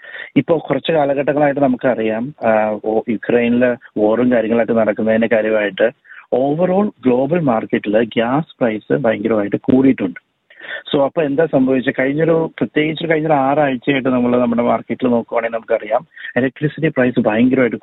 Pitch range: 115-150 Hz